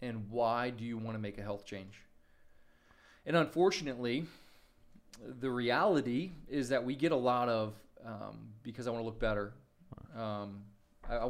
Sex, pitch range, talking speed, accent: male, 110-130 Hz, 165 wpm, American